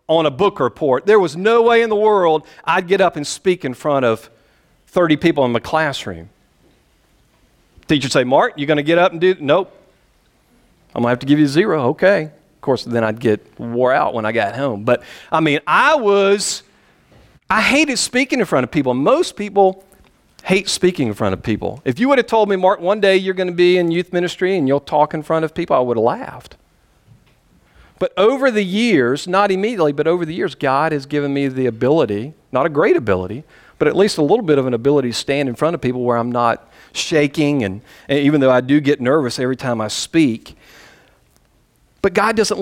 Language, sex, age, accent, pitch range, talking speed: English, male, 40-59, American, 135-195 Hz, 215 wpm